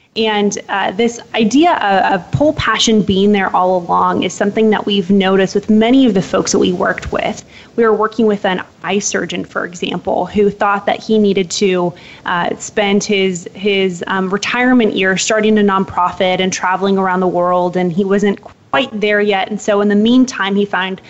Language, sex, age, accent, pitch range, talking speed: English, female, 20-39, American, 185-220 Hz, 195 wpm